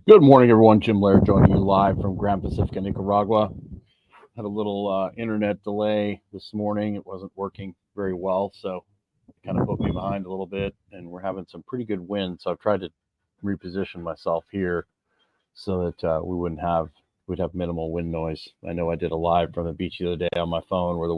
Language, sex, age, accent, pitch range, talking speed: English, male, 40-59, American, 85-100 Hz, 215 wpm